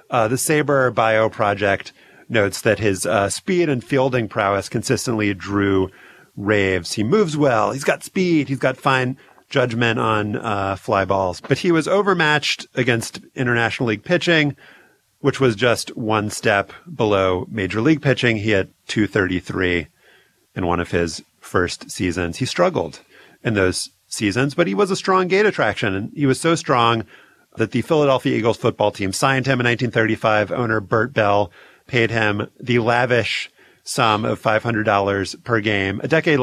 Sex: male